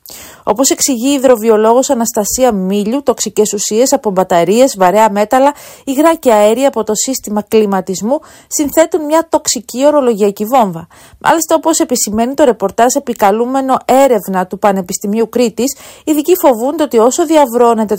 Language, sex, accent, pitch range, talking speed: Greek, female, native, 205-265 Hz, 130 wpm